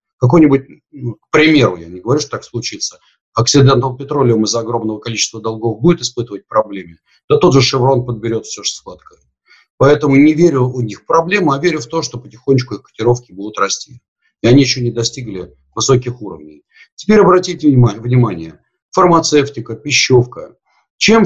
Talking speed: 160 wpm